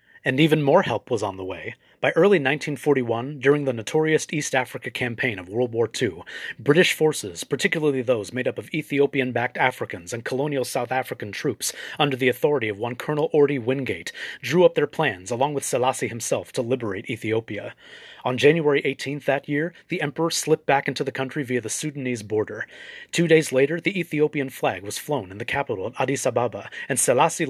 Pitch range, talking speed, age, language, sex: 125-155 Hz, 190 wpm, 30-49, English, male